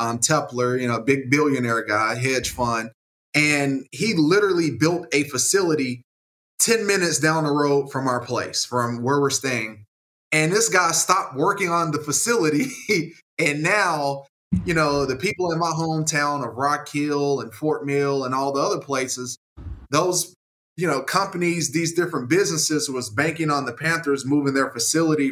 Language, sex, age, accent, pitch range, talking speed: English, male, 20-39, American, 125-155 Hz, 165 wpm